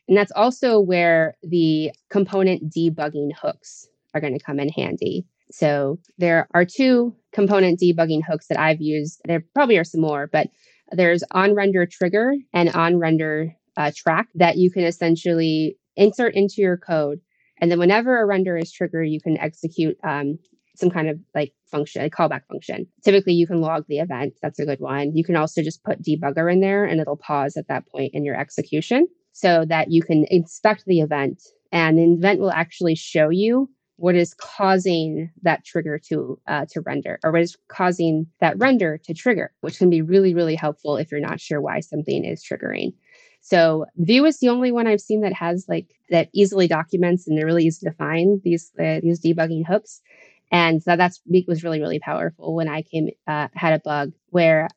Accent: American